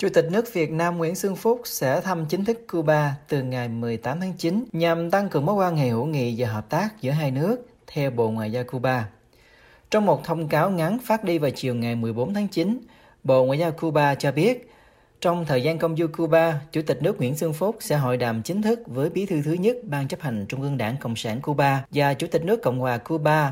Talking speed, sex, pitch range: 240 wpm, male, 130-175 Hz